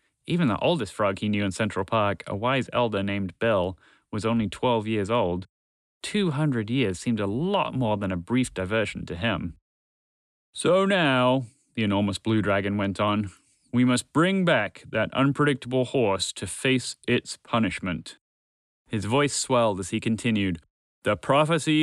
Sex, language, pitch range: male, English, 100-140 Hz